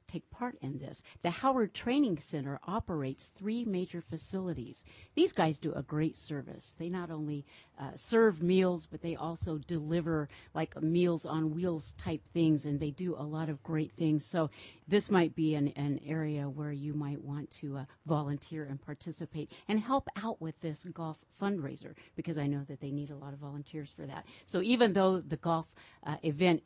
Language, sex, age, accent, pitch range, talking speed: English, female, 50-69, American, 145-175 Hz, 190 wpm